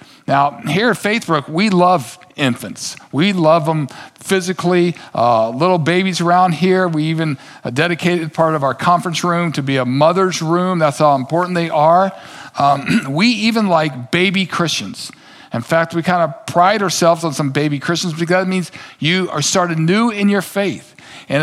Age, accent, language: 50-69, American, English